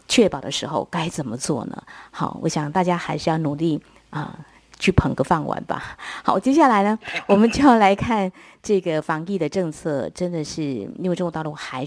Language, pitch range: Chinese, 145-200 Hz